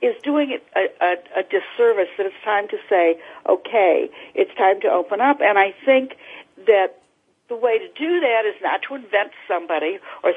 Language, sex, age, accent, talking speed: English, female, 60-79, American, 190 wpm